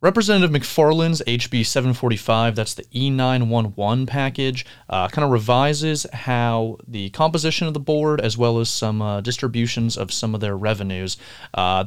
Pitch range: 105-130 Hz